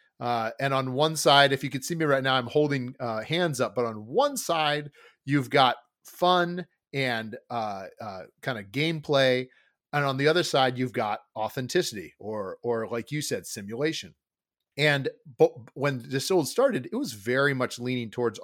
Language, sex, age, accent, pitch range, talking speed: English, male, 40-59, American, 120-150 Hz, 180 wpm